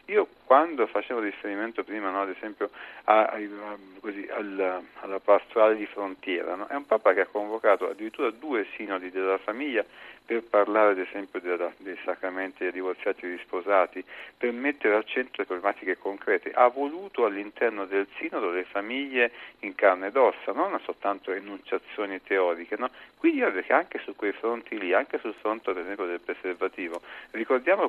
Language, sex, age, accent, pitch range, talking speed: Italian, male, 40-59, native, 100-125 Hz, 165 wpm